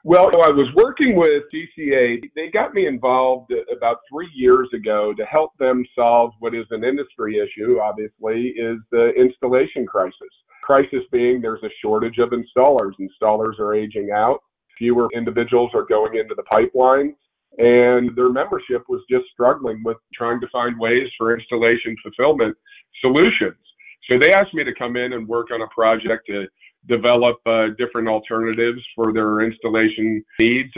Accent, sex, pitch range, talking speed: American, male, 115-135 Hz, 160 wpm